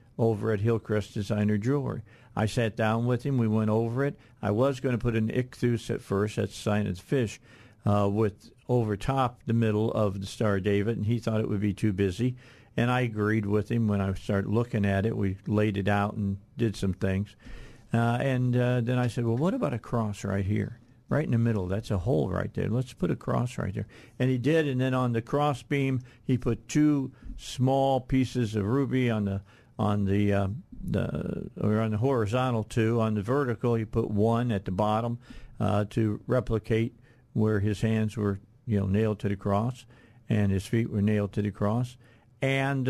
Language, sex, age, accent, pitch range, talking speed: English, male, 50-69, American, 105-130 Hz, 215 wpm